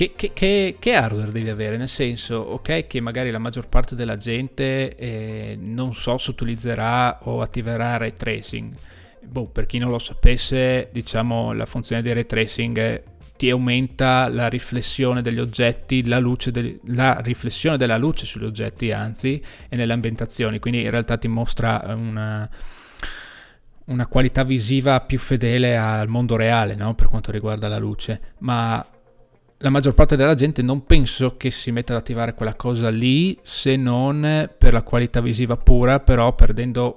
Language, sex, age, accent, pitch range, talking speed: Italian, male, 20-39, native, 115-125 Hz, 165 wpm